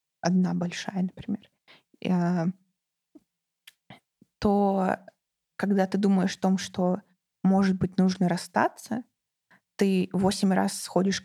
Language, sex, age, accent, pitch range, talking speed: Russian, female, 20-39, native, 180-205 Hz, 95 wpm